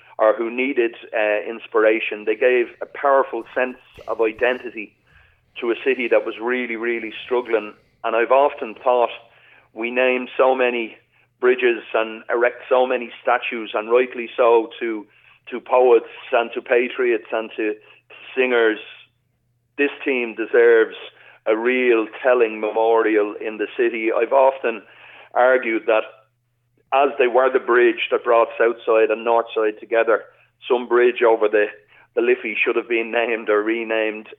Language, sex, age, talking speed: English, male, 40-59, 145 wpm